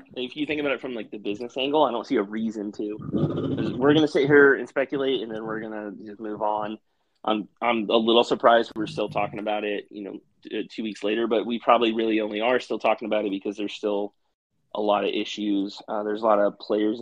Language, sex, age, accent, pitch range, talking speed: English, male, 20-39, American, 105-120 Hz, 235 wpm